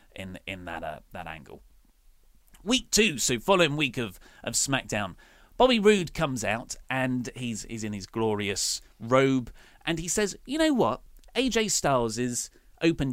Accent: British